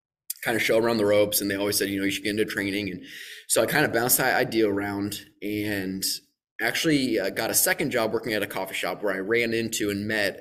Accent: American